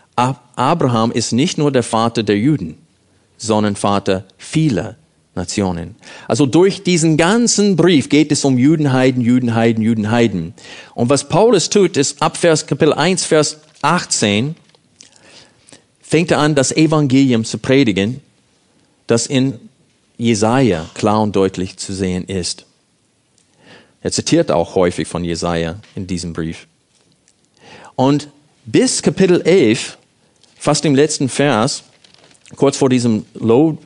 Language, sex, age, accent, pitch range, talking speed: German, male, 40-59, German, 110-150 Hz, 125 wpm